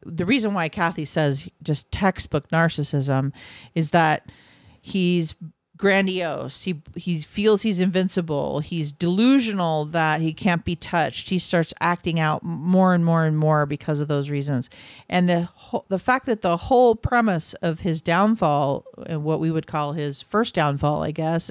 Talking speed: 160 wpm